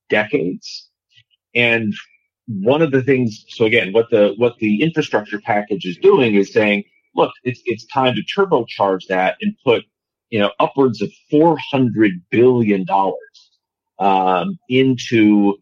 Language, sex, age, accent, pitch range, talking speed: English, male, 40-59, American, 100-140 Hz, 140 wpm